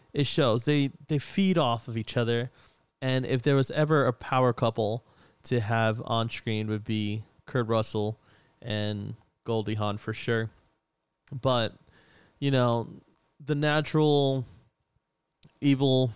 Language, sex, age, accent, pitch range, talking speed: English, male, 20-39, American, 110-130 Hz, 135 wpm